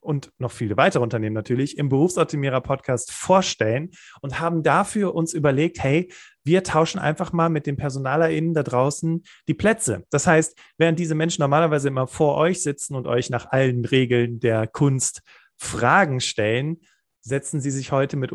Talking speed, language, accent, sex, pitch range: 165 wpm, German, German, male, 130-160 Hz